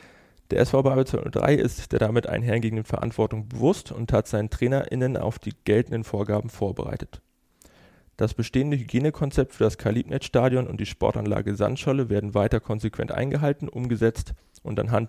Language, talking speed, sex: German, 145 wpm, male